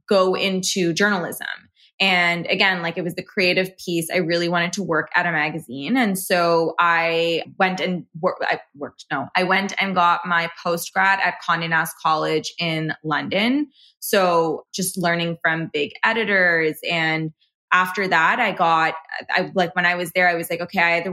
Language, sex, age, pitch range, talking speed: English, female, 20-39, 160-185 Hz, 180 wpm